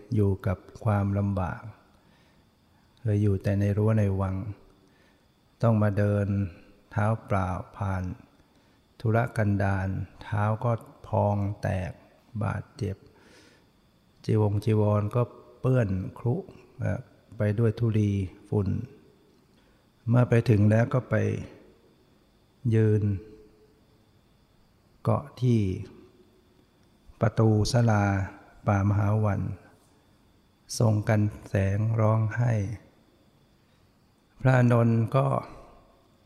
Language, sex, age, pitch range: Thai, male, 60-79, 100-115 Hz